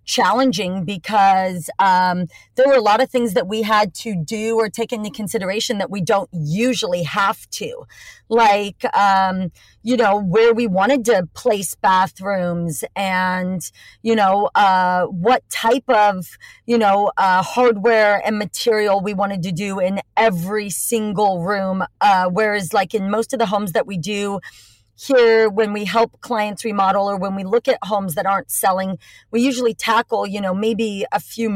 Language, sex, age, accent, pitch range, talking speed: English, female, 40-59, American, 190-230 Hz, 170 wpm